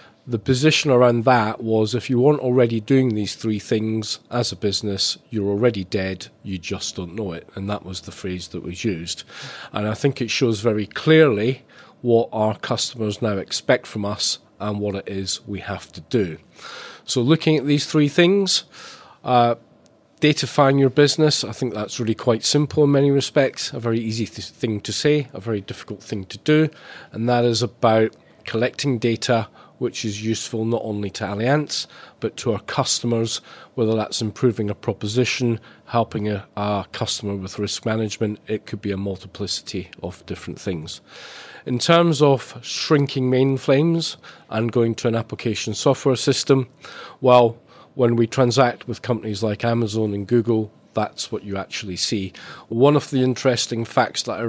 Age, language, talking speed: 40-59, English, 170 wpm